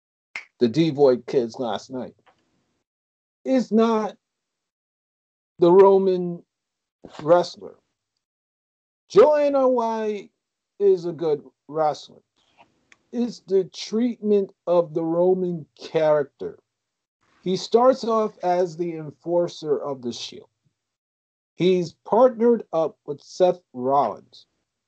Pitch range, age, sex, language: 155-205 Hz, 50-69, male, English